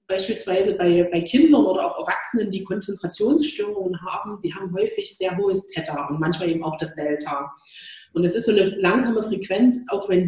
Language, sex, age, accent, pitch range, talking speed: German, female, 30-49, German, 170-205 Hz, 180 wpm